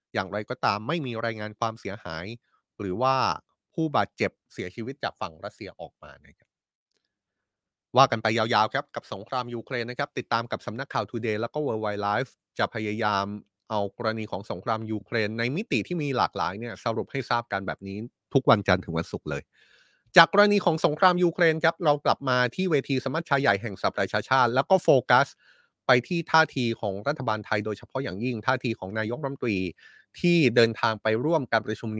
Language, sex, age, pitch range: Thai, male, 20-39, 110-150 Hz